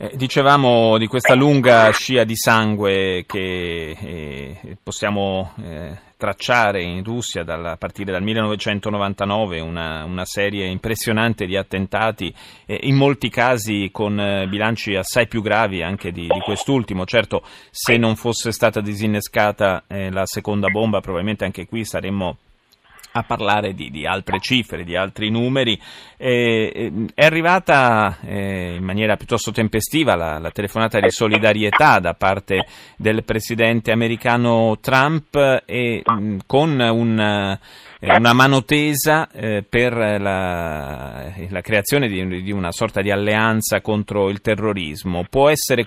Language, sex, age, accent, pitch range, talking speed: Italian, male, 30-49, native, 95-115 Hz, 130 wpm